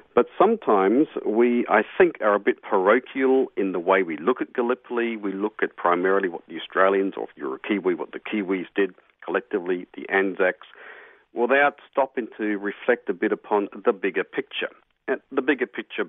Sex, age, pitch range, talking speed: male, 50-69, 95-130 Hz, 180 wpm